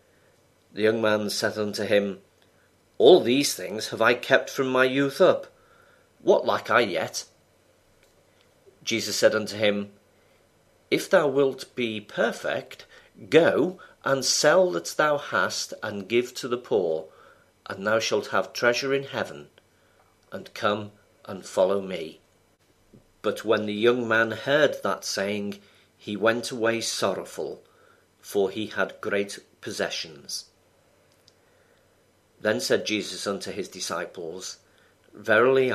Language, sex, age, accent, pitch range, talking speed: English, male, 40-59, British, 105-140 Hz, 130 wpm